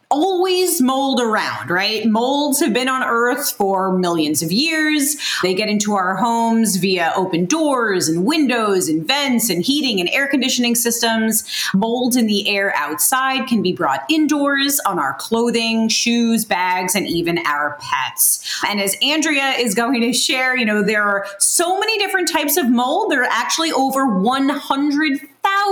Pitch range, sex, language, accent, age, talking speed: 190-270 Hz, female, English, American, 30-49, 165 wpm